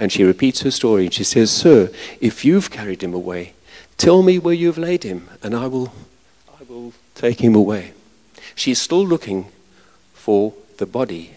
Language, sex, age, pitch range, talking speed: English, male, 50-69, 100-130 Hz, 185 wpm